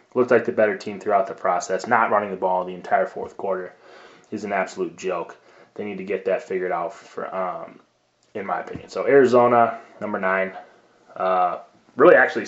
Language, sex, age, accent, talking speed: English, male, 20-39, American, 190 wpm